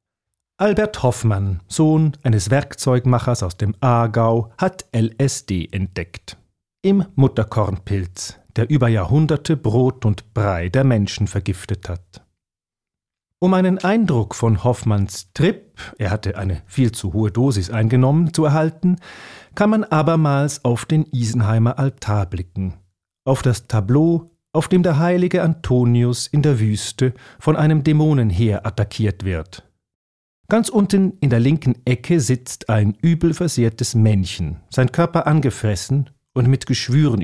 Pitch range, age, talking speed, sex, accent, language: 105-150 Hz, 40-59, 130 wpm, male, German, German